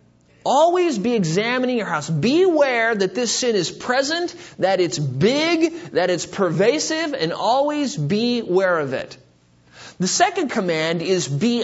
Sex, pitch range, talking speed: male, 155-240 Hz, 140 wpm